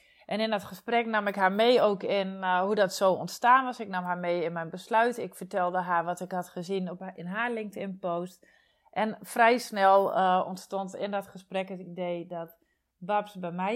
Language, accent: Dutch, Dutch